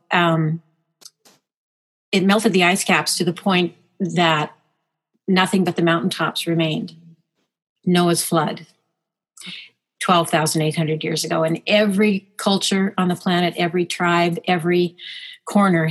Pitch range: 165-190 Hz